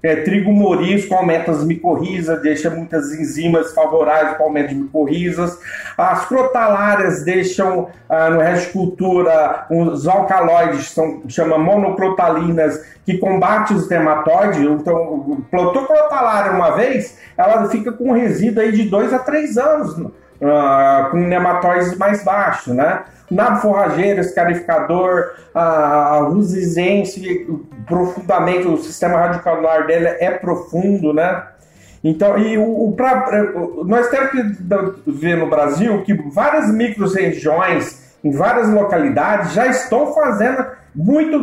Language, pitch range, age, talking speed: Portuguese, 165-215 Hz, 40-59, 125 wpm